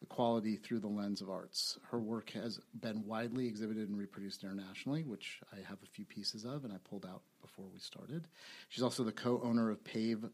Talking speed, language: 205 wpm, English